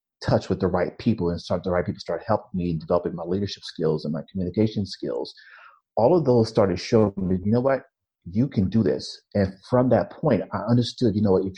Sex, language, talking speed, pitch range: male, English, 225 wpm, 90-115 Hz